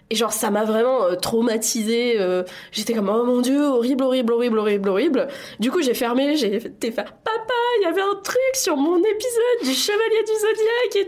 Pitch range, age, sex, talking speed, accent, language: 185-270 Hz, 20-39, female, 220 wpm, French, French